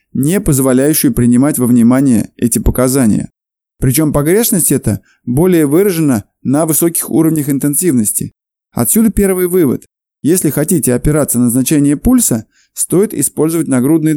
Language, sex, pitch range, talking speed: Russian, male, 140-185 Hz, 120 wpm